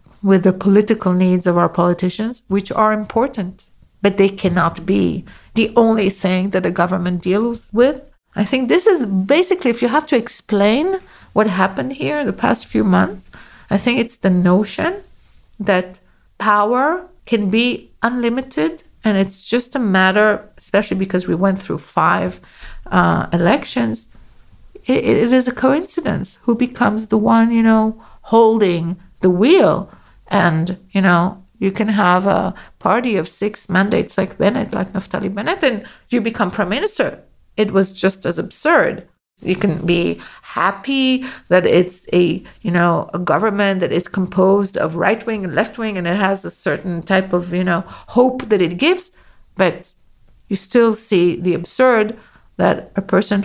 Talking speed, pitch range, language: 160 wpm, 185-230 Hz, English